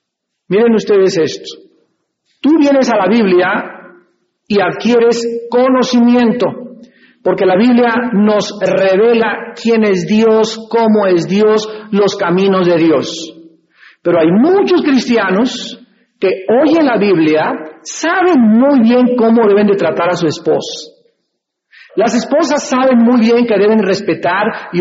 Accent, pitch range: Mexican, 195-265 Hz